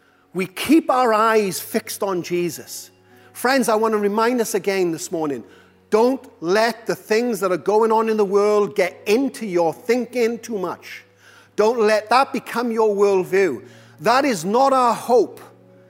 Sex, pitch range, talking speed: male, 190-235 Hz, 165 wpm